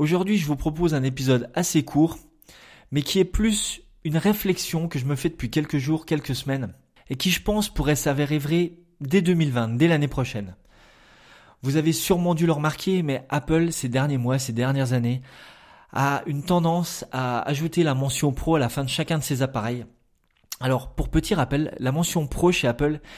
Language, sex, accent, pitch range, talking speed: French, male, French, 135-165 Hz, 190 wpm